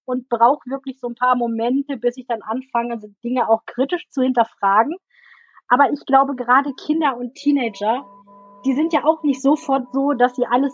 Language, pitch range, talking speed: German, 225-275 Hz, 185 wpm